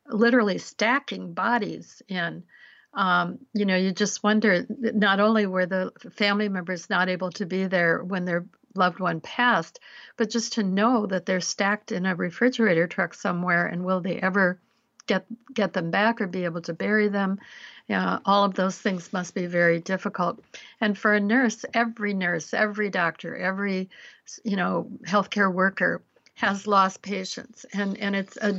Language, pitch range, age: English, 185-220 Hz, 60-79